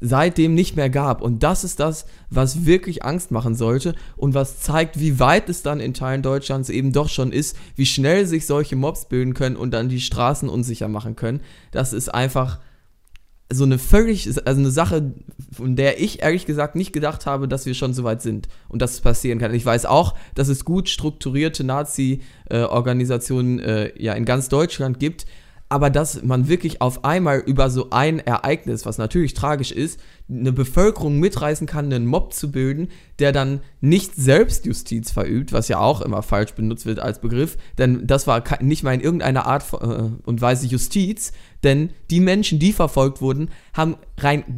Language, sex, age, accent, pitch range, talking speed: German, male, 20-39, German, 125-155 Hz, 190 wpm